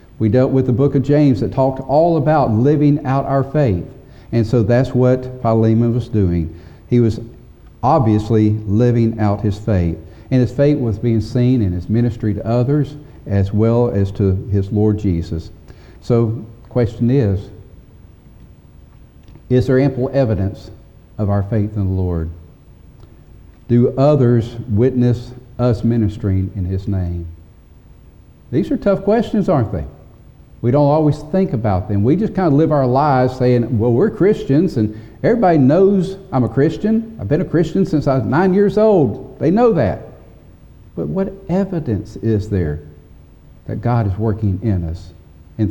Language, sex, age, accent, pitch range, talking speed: English, male, 50-69, American, 105-140 Hz, 160 wpm